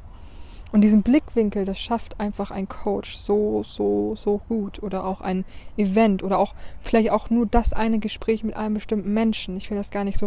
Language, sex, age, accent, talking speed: German, female, 20-39, German, 200 wpm